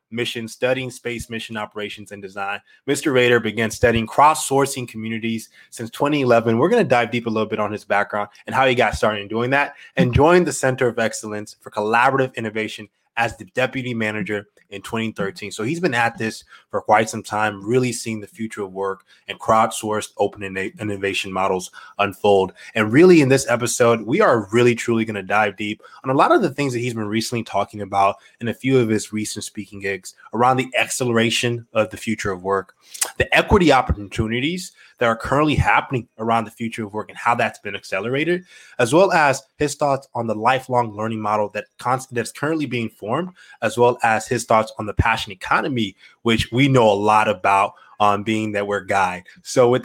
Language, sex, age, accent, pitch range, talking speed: English, male, 20-39, American, 105-130 Hz, 200 wpm